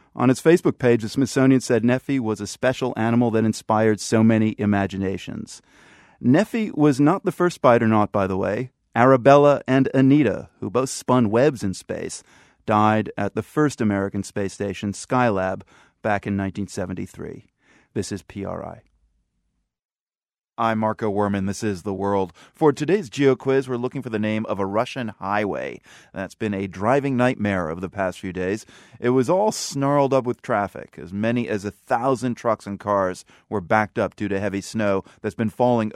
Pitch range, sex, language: 100-130 Hz, male, English